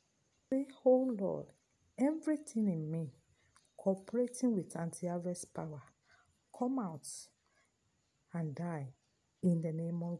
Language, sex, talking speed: English, female, 105 wpm